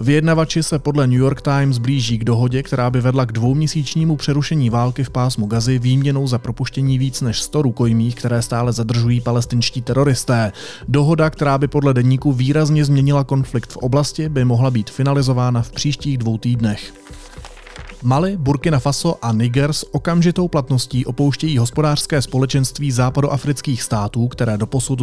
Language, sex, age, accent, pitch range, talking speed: Czech, male, 30-49, native, 120-140 Hz, 150 wpm